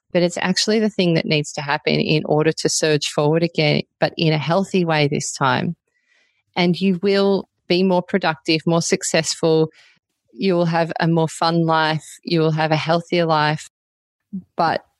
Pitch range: 160-200 Hz